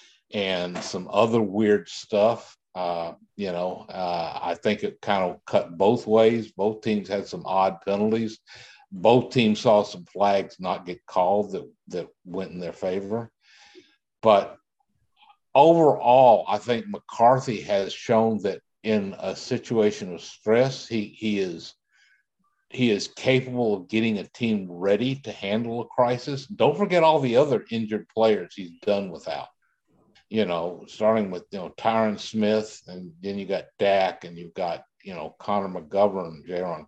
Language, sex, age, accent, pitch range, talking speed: English, male, 60-79, American, 100-125 Hz, 155 wpm